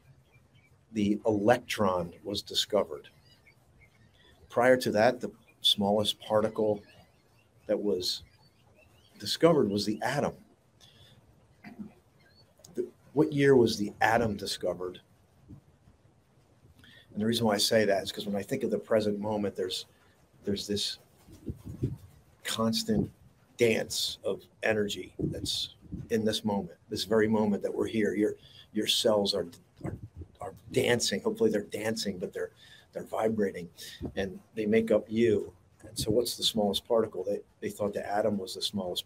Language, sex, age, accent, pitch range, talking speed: English, male, 50-69, American, 105-125 Hz, 135 wpm